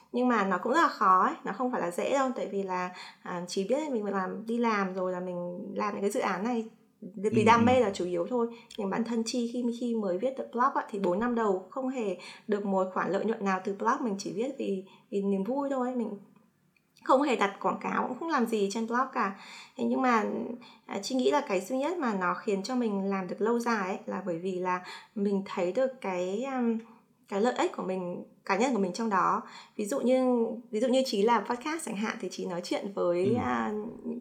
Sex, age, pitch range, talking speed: female, 20-39, 195-245 Hz, 255 wpm